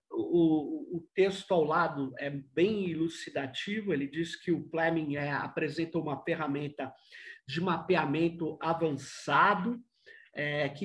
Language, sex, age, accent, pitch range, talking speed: Portuguese, male, 50-69, Brazilian, 160-205 Hz, 105 wpm